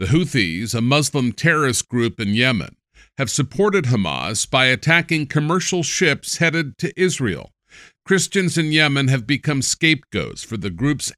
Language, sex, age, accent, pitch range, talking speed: English, male, 50-69, American, 115-160 Hz, 145 wpm